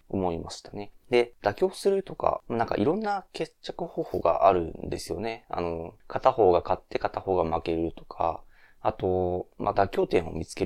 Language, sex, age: Japanese, male, 20-39